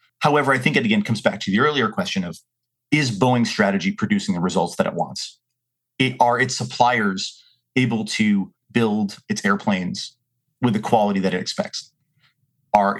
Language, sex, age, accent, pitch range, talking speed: English, male, 30-49, American, 120-195 Hz, 165 wpm